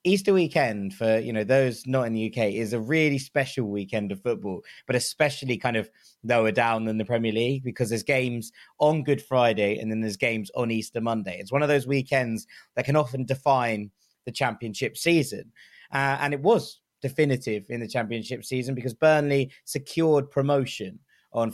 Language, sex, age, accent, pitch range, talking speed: English, male, 20-39, British, 110-135 Hz, 185 wpm